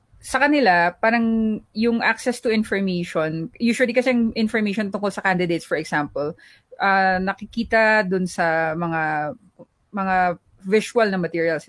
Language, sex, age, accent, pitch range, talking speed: Filipino, female, 20-39, native, 170-220 Hz, 135 wpm